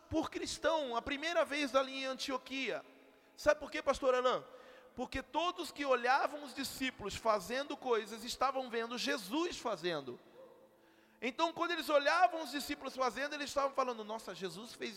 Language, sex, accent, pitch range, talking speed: Portuguese, male, Brazilian, 235-310 Hz, 150 wpm